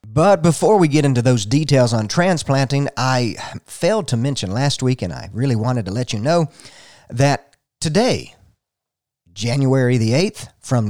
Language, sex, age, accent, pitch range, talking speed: English, male, 50-69, American, 110-145 Hz, 160 wpm